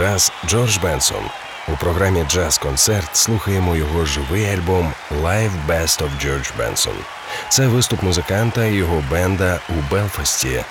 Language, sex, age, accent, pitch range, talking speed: Ukrainian, male, 40-59, native, 75-100 Hz, 135 wpm